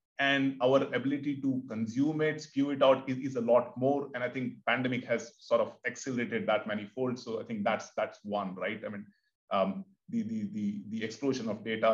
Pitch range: 120-165 Hz